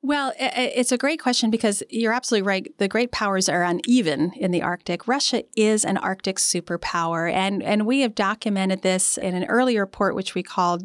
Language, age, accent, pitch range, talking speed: English, 40-59, American, 180-220 Hz, 195 wpm